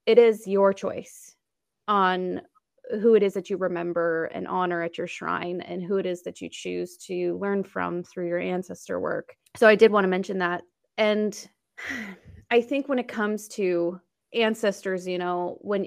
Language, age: English, 20-39